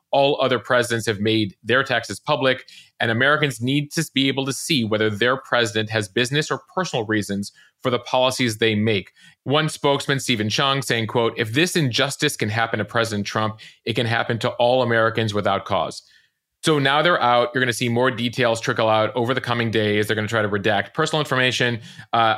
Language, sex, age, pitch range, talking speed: English, male, 30-49, 110-140 Hz, 205 wpm